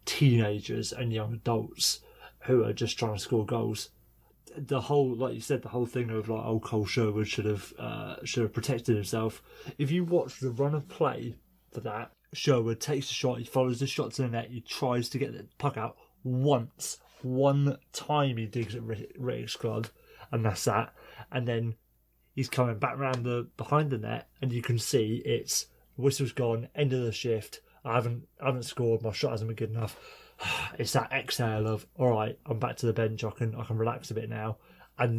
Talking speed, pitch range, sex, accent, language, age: 210 wpm, 110-130 Hz, male, British, English, 20-39